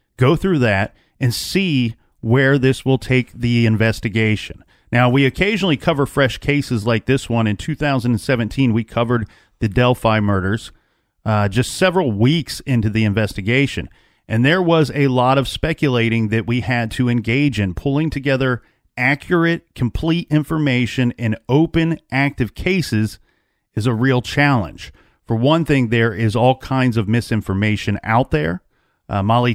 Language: English